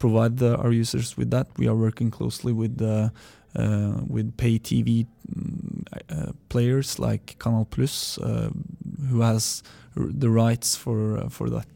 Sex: male